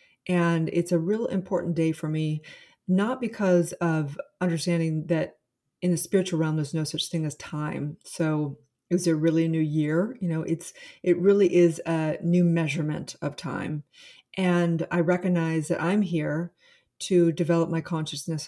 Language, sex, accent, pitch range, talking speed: English, female, American, 155-175 Hz, 165 wpm